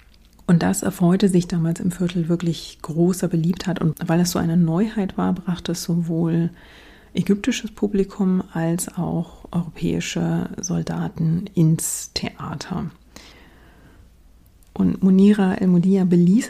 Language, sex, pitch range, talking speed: German, female, 170-200 Hz, 120 wpm